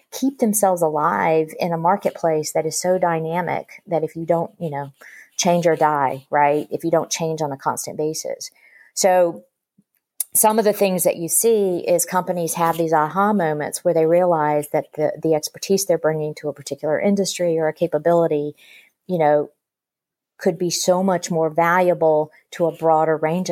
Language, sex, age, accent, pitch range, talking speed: English, female, 40-59, American, 155-180 Hz, 180 wpm